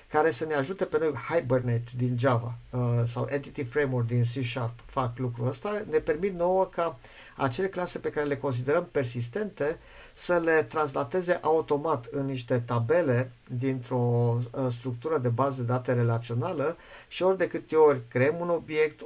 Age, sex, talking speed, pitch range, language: 50-69, male, 165 wpm, 125-155 Hz, Romanian